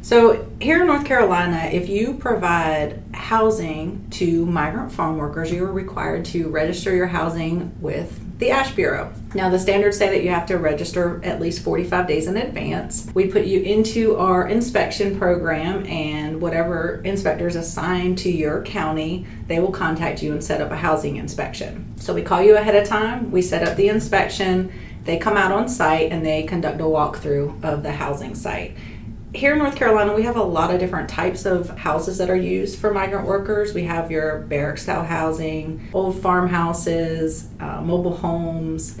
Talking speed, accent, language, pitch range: 180 wpm, American, English, 160-195 Hz